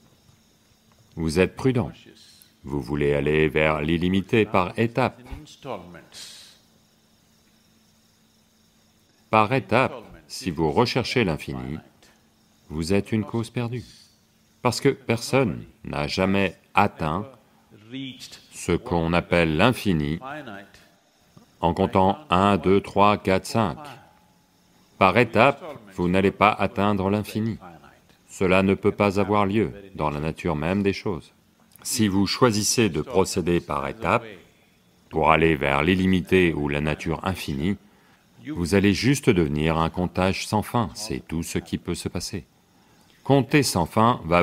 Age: 40-59